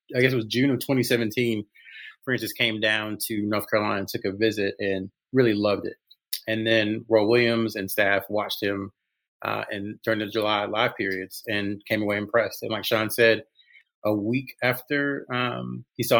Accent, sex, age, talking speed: American, male, 30-49, 180 wpm